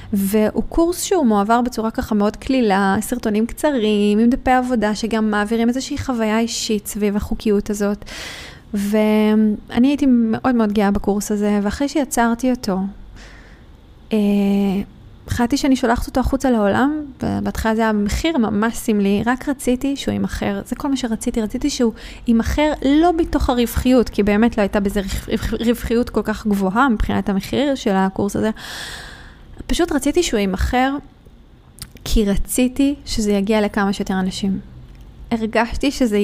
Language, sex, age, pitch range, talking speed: Hebrew, female, 20-39, 205-255 Hz, 140 wpm